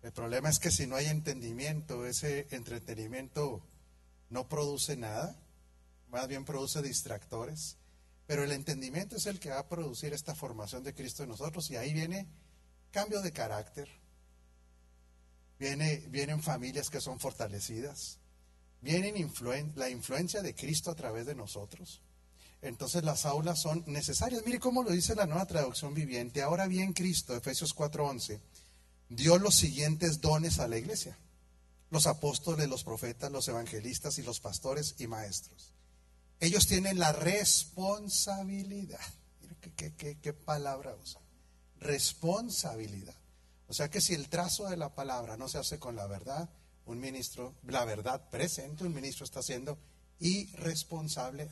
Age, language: 40-59, Spanish